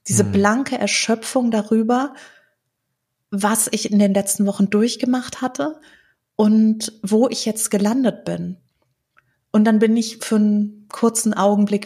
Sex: female